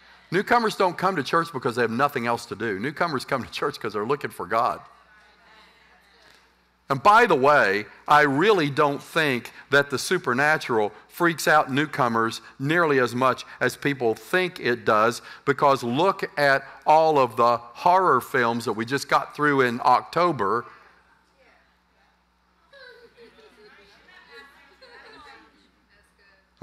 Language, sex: English, male